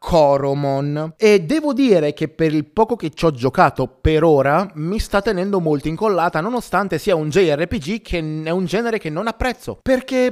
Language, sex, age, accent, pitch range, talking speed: Italian, male, 20-39, native, 135-185 Hz, 180 wpm